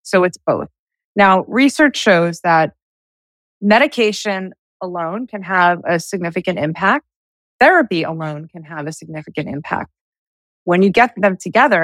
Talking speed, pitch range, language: 130 wpm, 165-210 Hz, English